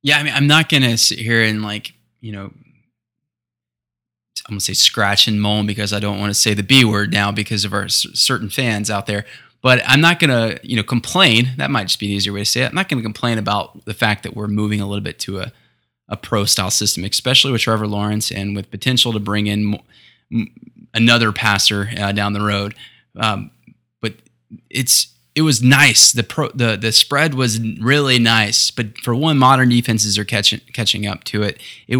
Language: English